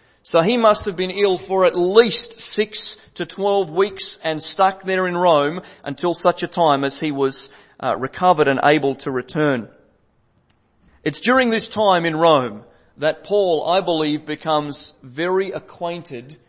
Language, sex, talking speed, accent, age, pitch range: English, male, 155 wpm, Australian, 40-59, 145-185 Hz